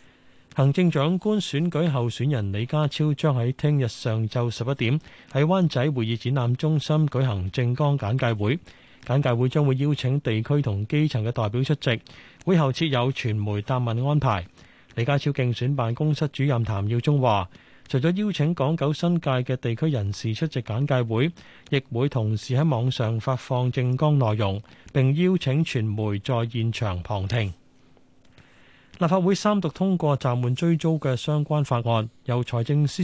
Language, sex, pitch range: Chinese, male, 120-150 Hz